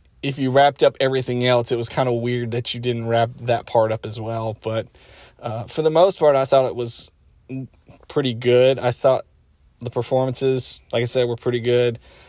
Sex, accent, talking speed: male, American, 205 wpm